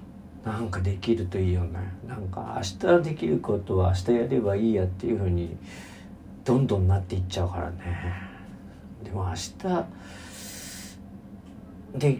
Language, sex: Japanese, male